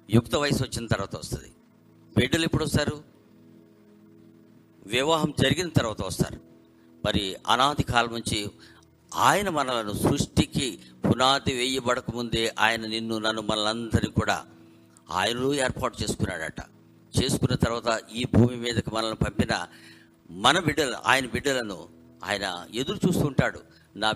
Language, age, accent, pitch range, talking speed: Telugu, 50-69, native, 85-120 Hz, 105 wpm